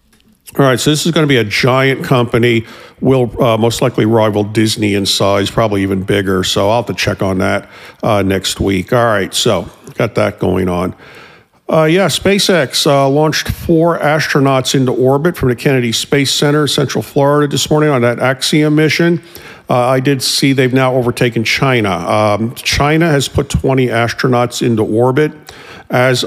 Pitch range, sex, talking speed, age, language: 105-140 Hz, male, 180 wpm, 50-69, English